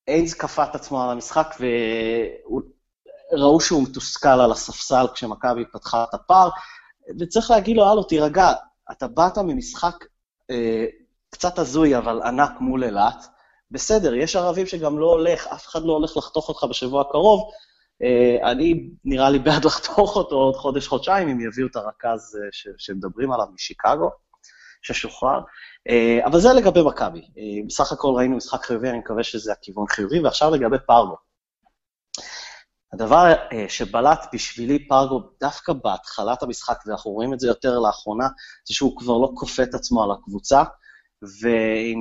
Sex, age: male, 30-49